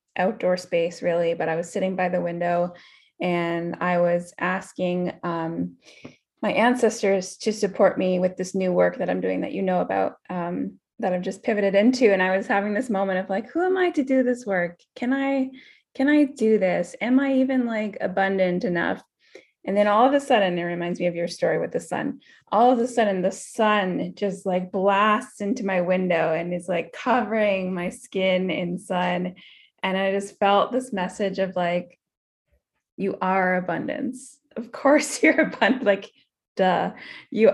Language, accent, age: English, American, 20-39